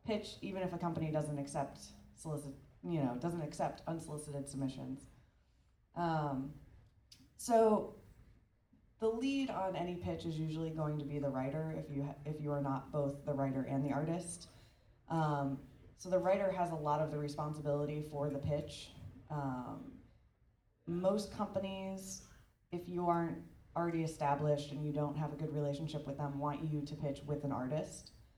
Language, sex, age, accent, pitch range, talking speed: English, female, 20-39, American, 140-170 Hz, 165 wpm